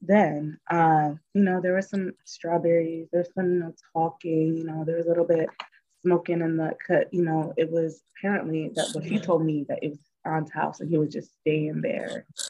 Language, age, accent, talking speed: English, 20-39, American, 220 wpm